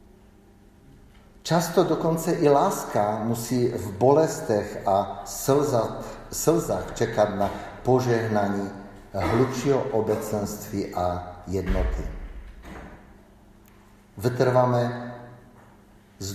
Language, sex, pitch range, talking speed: Czech, male, 100-120 Hz, 70 wpm